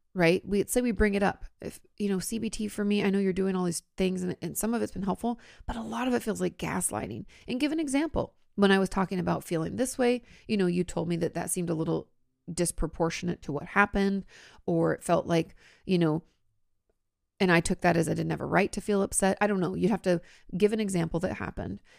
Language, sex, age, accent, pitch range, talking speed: English, female, 30-49, American, 170-210 Hz, 250 wpm